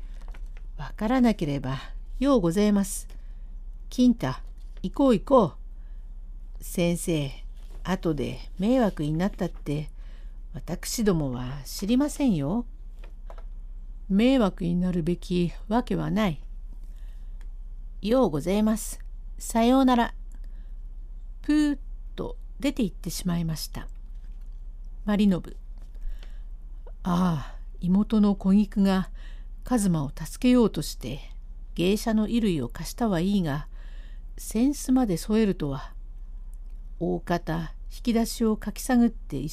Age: 50-69